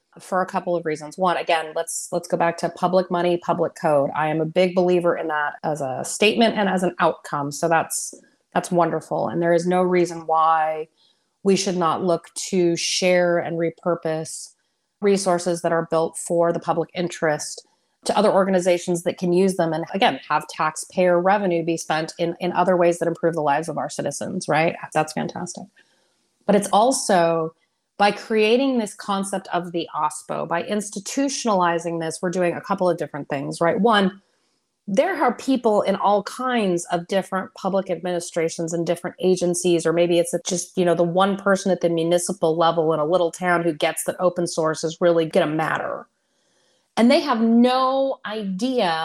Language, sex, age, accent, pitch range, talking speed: English, female, 30-49, American, 165-195 Hz, 185 wpm